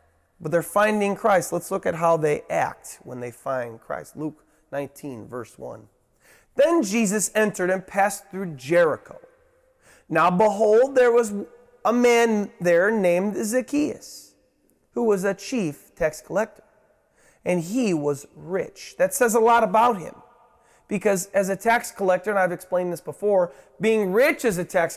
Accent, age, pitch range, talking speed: American, 30-49, 170-220 Hz, 155 wpm